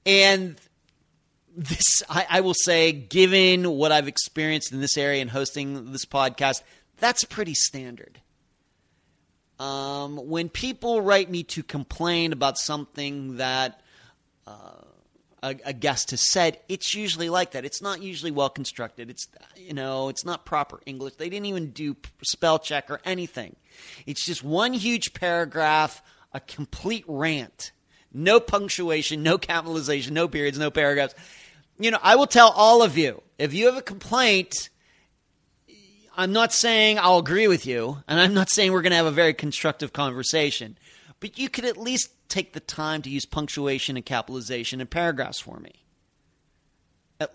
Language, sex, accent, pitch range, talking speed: English, male, American, 140-190 Hz, 160 wpm